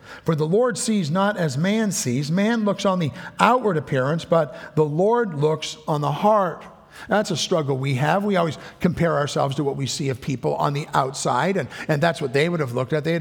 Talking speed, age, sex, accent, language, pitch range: 225 wpm, 50-69, male, American, English, 125-165 Hz